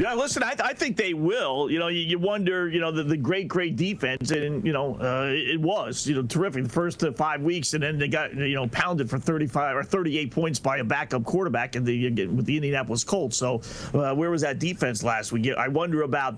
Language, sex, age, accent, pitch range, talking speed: English, male, 40-59, American, 135-195 Hz, 245 wpm